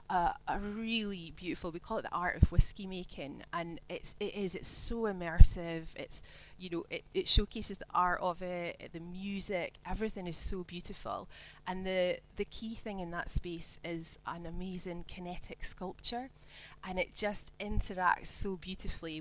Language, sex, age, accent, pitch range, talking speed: English, female, 20-39, British, 170-205 Hz, 170 wpm